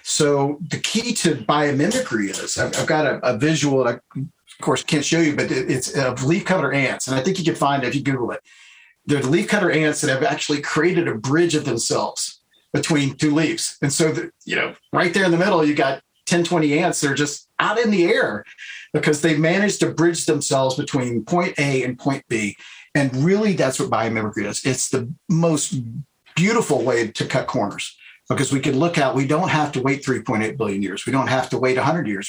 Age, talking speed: 50-69, 220 wpm